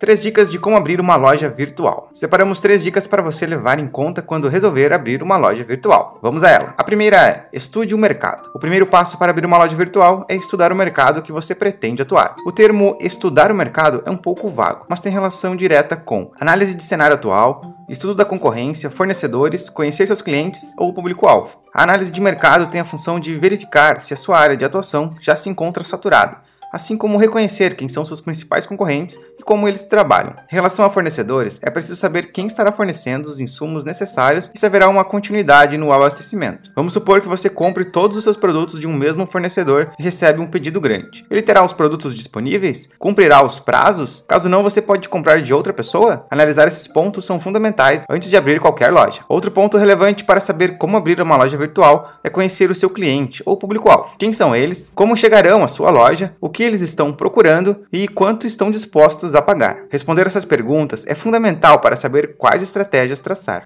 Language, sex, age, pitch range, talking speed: Portuguese, male, 20-39, 150-200 Hz, 205 wpm